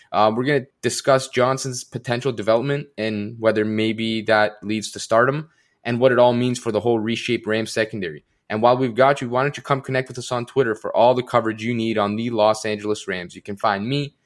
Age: 20-39